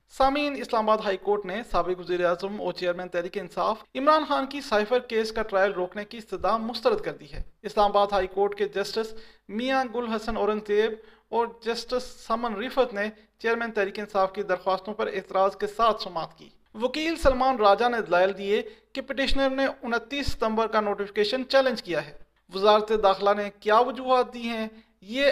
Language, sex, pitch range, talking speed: Urdu, male, 195-235 Hz, 180 wpm